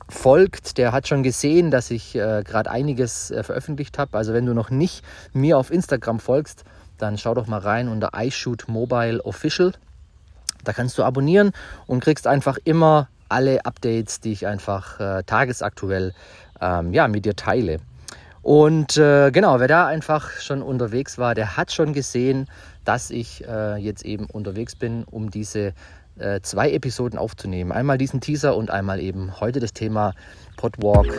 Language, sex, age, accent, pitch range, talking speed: German, male, 30-49, German, 105-150 Hz, 165 wpm